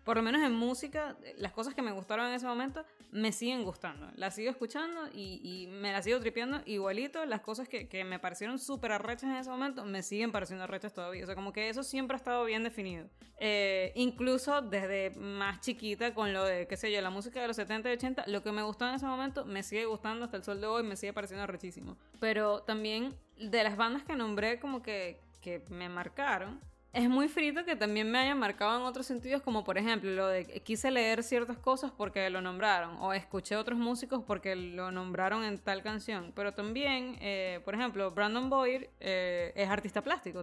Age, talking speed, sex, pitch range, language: 20-39, 215 wpm, female, 195-255 Hz, English